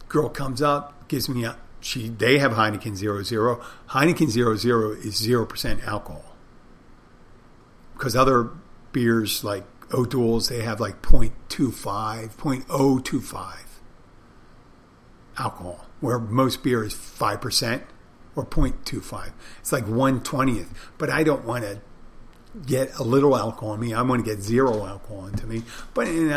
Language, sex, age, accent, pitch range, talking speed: English, male, 50-69, American, 110-130 Hz, 135 wpm